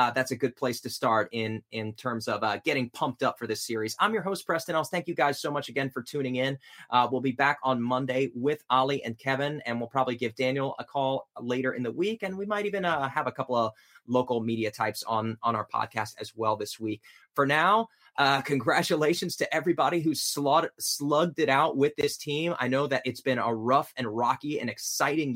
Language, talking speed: English, 230 wpm